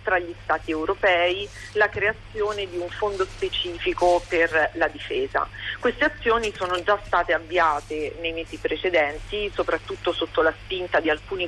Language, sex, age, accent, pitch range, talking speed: Italian, female, 40-59, native, 165-250 Hz, 145 wpm